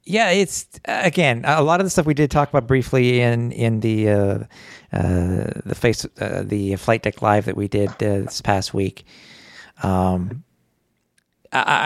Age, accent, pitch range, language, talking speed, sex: 50-69, American, 110-150 Hz, English, 170 wpm, male